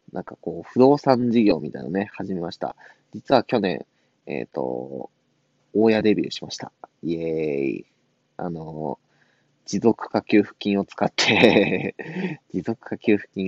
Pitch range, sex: 90-125 Hz, male